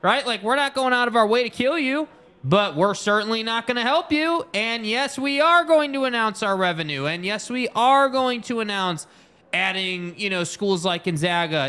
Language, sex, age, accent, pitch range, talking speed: English, male, 20-39, American, 175-225 Hz, 215 wpm